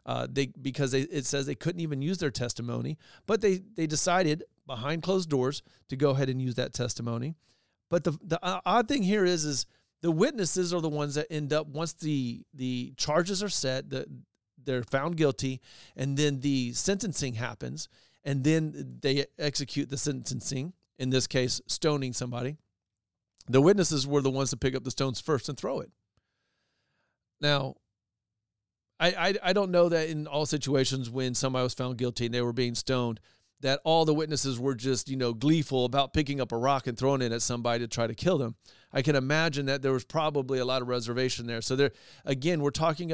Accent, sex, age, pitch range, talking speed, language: American, male, 40-59, 125-160 Hz, 200 wpm, English